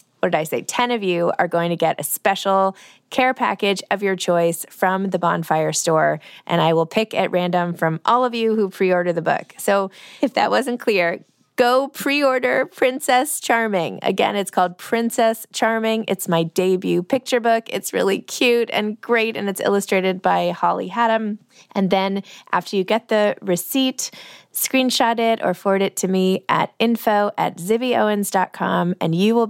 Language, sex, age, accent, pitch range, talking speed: English, female, 20-39, American, 180-235 Hz, 175 wpm